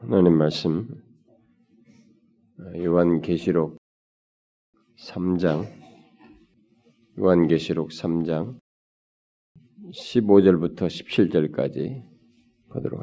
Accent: native